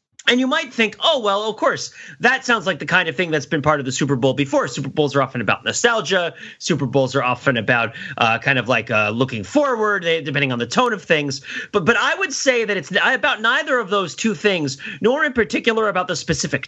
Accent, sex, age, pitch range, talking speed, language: American, male, 30-49, 145-230 Hz, 235 wpm, English